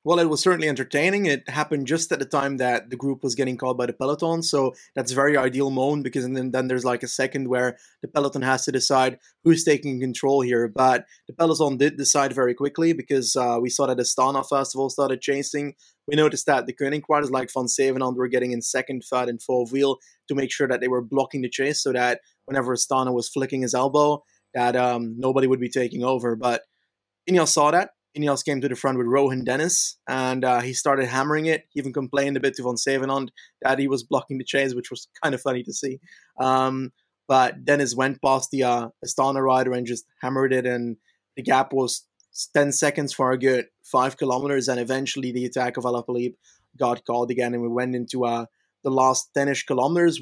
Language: English